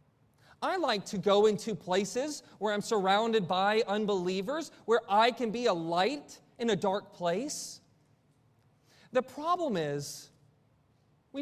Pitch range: 145-230 Hz